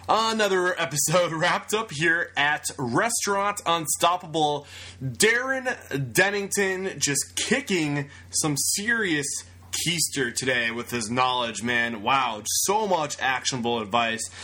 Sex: male